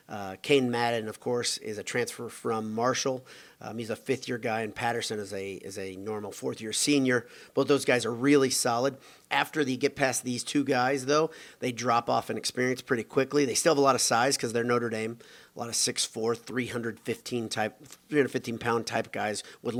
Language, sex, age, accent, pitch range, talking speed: English, male, 40-59, American, 110-130 Hz, 205 wpm